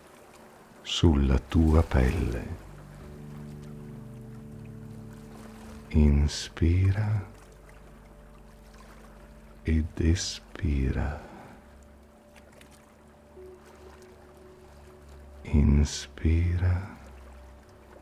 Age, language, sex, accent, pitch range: 50-69, Italian, male, native, 75-110 Hz